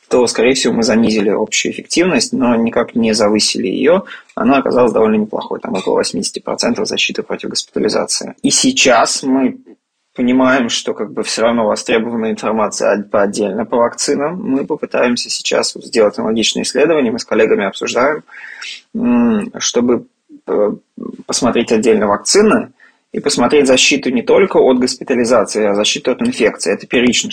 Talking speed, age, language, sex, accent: 135 wpm, 20-39, Russian, male, native